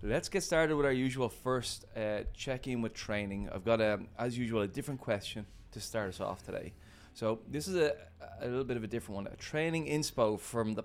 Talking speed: 220 wpm